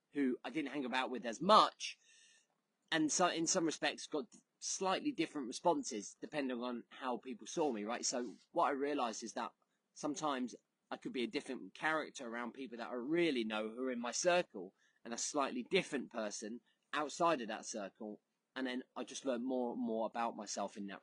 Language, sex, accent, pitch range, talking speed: English, male, British, 125-170 Hz, 195 wpm